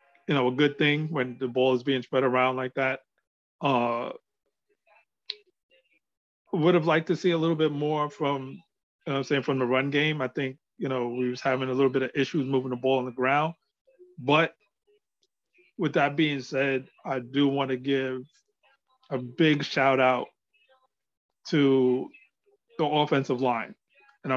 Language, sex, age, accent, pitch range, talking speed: English, male, 30-49, American, 130-165 Hz, 175 wpm